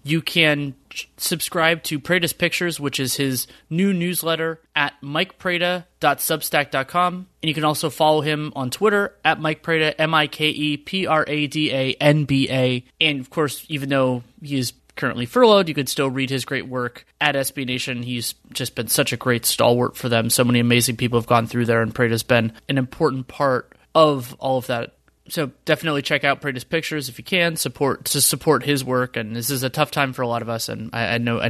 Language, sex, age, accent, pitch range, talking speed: English, male, 30-49, American, 125-150 Hz, 190 wpm